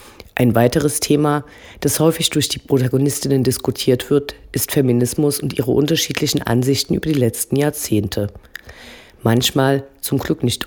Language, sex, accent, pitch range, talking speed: German, female, German, 120-145 Hz, 135 wpm